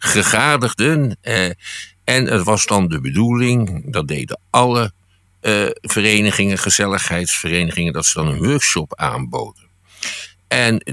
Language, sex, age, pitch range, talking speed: Dutch, male, 50-69, 95-130 Hz, 115 wpm